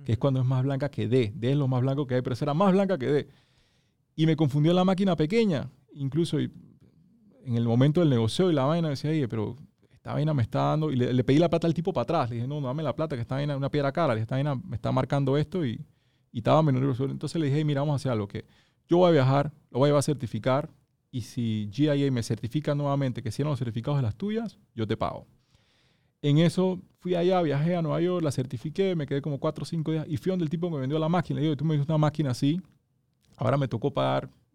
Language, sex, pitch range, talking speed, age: Spanish, male, 125-155 Hz, 260 wpm, 30-49